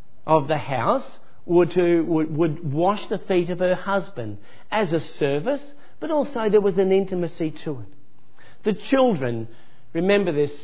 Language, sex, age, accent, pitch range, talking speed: English, male, 50-69, Australian, 145-200 Hz, 160 wpm